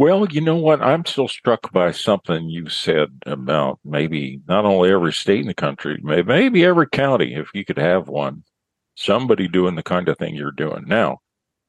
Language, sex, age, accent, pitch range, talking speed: English, male, 50-69, American, 85-105 Hz, 190 wpm